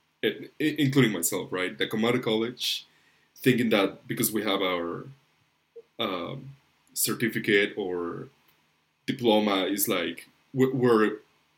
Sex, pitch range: male, 100-130 Hz